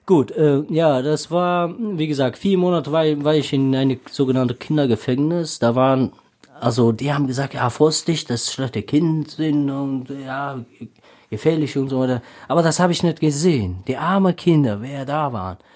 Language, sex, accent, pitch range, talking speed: German, male, German, 110-150 Hz, 180 wpm